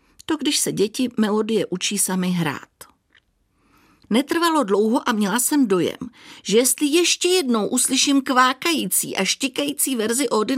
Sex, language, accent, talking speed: female, Czech, native, 135 wpm